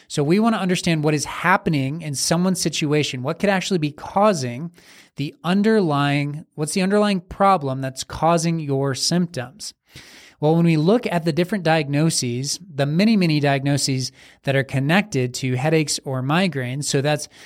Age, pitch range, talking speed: 20-39, 140-170 Hz, 160 wpm